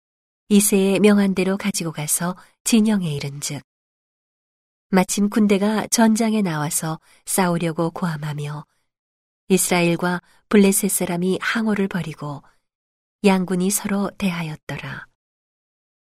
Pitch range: 165-210 Hz